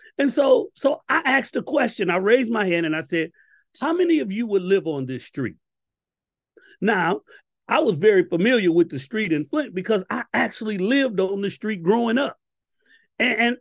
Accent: American